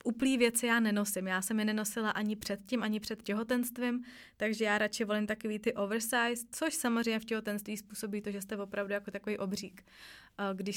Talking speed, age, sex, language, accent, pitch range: 185 wpm, 20-39, female, Czech, native, 200-225 Hz